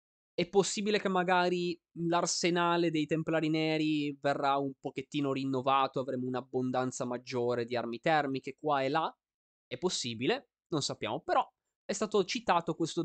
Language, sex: Italian, male